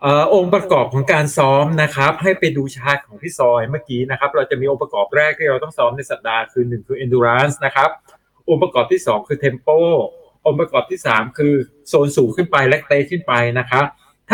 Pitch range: 125-160 Hz